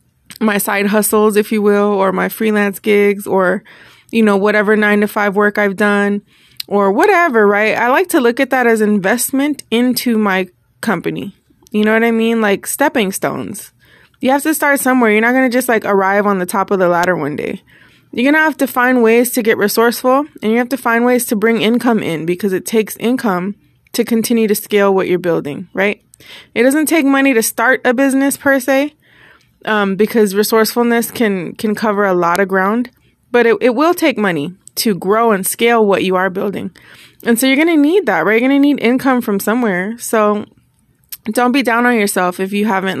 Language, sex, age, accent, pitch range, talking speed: English, female, 20-39, American, 195-235 Hz, 210 wpm